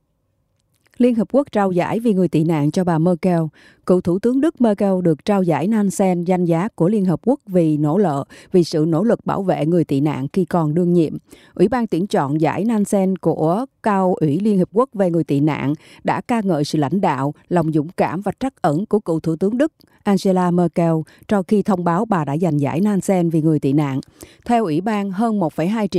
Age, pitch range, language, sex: 20-39, 160-205 Hz, Japanese, female